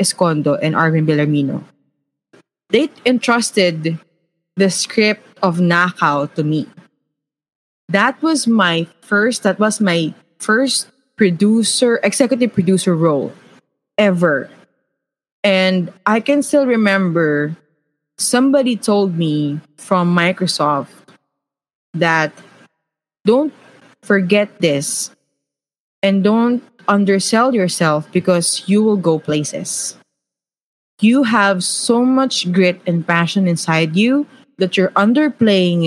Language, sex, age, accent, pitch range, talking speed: Filipino, female, 20-39, native, 160-205 Hz, 100 wpm